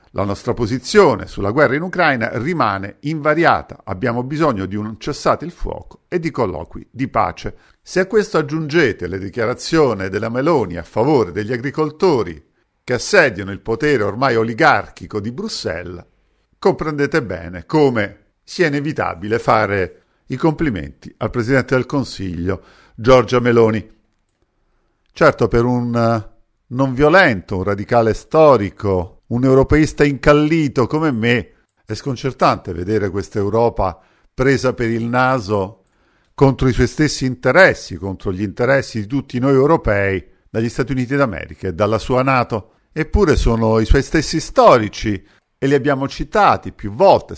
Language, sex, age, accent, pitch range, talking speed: Italian, male, 50-69, native, 100-140 Hz, 140 wpm